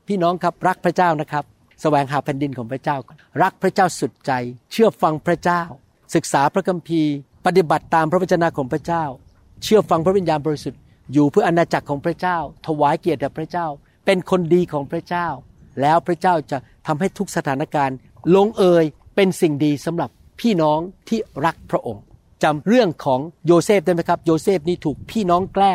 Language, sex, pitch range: Thai, male, 145-195 Hz